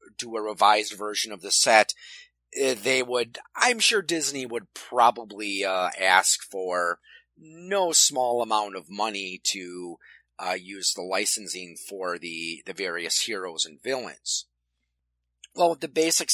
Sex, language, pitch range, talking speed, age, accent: male, English, 90-130 Hz, 135 wpm, 30-49, American